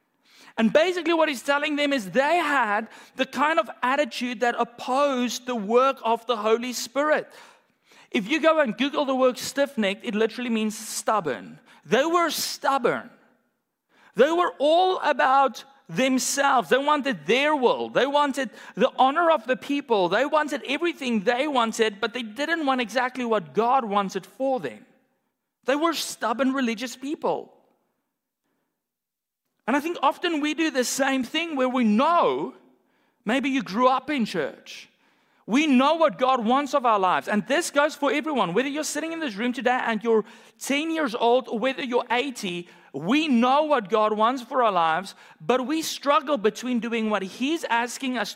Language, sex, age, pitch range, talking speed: English, male, 40-59, 225-285 Hz, 170 wpm